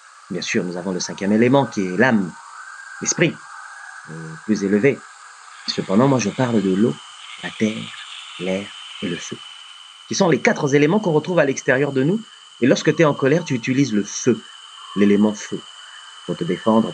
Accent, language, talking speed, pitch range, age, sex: French, French, 185 wpm, 105-145 Hz, 30-49, male